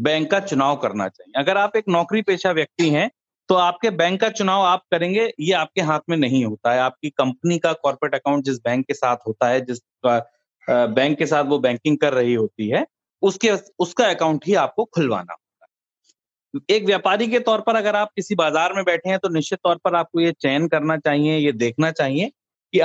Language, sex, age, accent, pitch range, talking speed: Hindi, male, 30-49, native, 145-195 Hz, 205 wpm